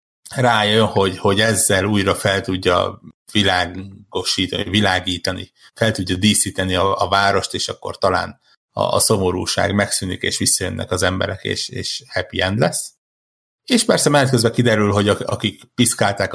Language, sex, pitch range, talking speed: Hungarian, male, 95-120 Hz, 140 wpm